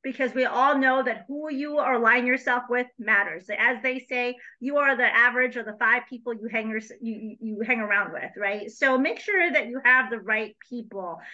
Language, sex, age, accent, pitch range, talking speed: English, female, 40-59, American, 225-285 Hz, 195 wpm